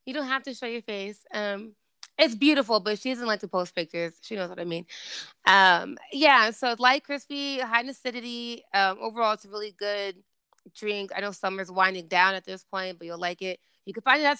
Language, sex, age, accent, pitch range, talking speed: English, female, 20-39, American, 190-255 Hz, 220 wpm